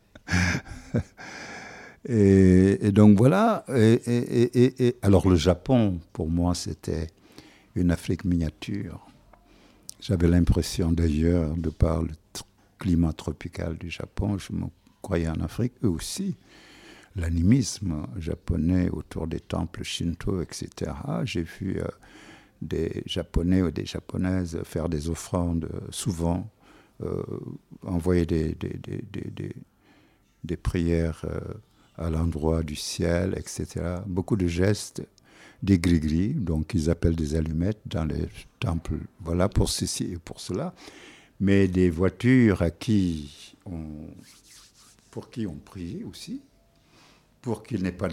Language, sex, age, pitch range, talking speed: French, male, 60-79, 85-110 Hz, 130 wpm